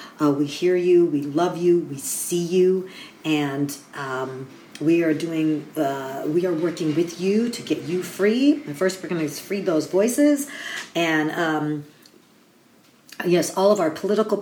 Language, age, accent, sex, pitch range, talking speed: English, 50-69, American, female, 160-210 Hz, 165 wpm